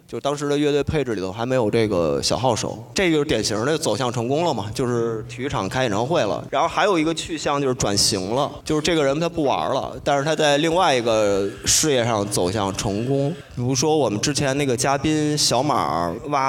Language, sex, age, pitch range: Chinese, male, 20-39, 110-145 Hz